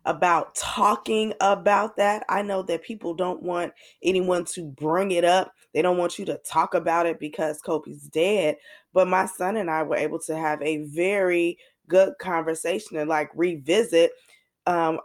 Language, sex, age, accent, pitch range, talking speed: English, female, 20-39, American, 170-205 Hz, 170 wpm